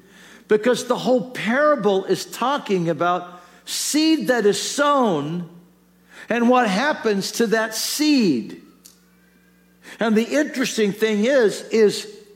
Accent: American